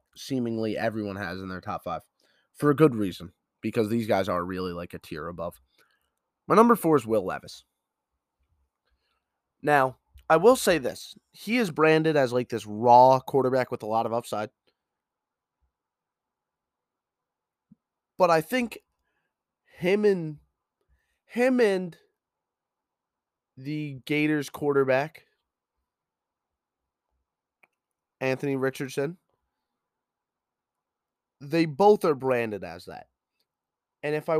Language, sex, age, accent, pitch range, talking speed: English, male, 20-39, American, 110-160 Hz, 115 wpm